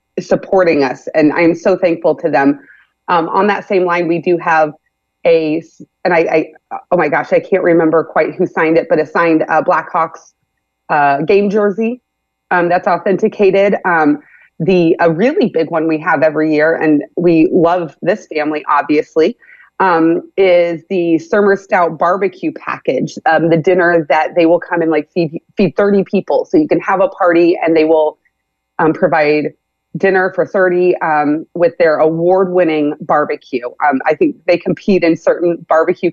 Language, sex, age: English, female, 30-49